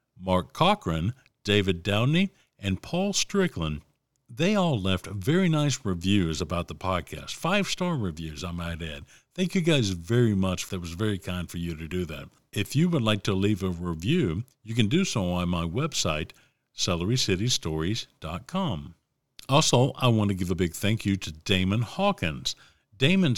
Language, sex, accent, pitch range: English, male, American, 95-140 Hz